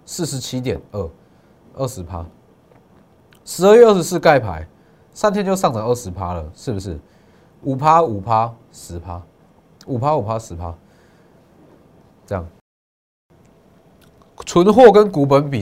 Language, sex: Chinese, male